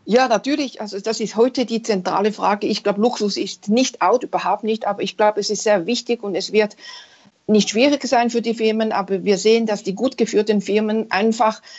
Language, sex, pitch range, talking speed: German, female, 195-225 Hz, 215 wpm